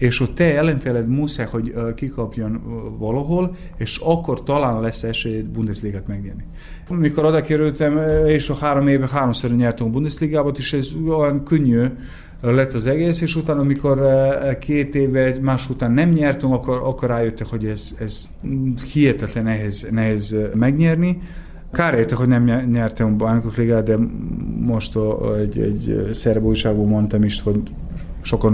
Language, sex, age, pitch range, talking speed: Hungarian, male, 30-49, 110-135 Hz, 145 wpm